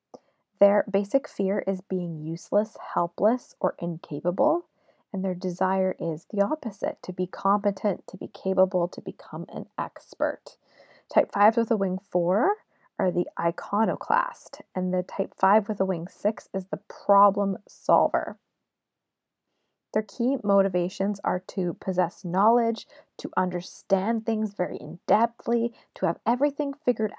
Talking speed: 135 wpm